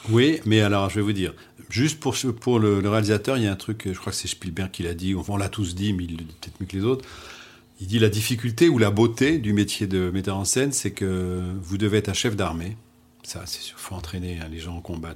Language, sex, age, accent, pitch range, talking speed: French, male, 40-59, French, 95-110 Hz, 285 wpm